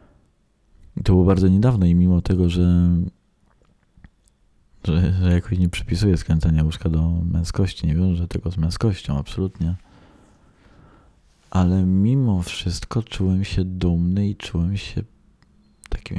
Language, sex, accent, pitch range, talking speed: Polish, male, native, 85-95 Hz, 130 wpm